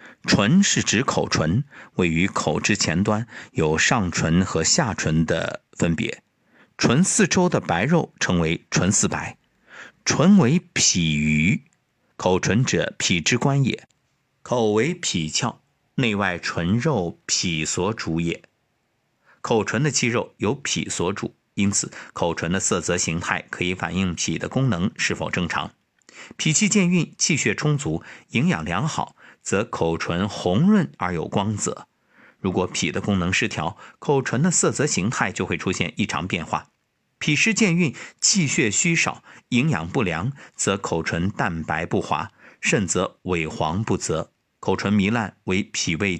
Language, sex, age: Chinese, male, 50-69